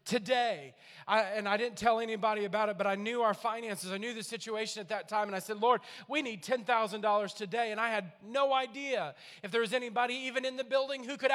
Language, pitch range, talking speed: English, 210-265 Hz, 245 wpm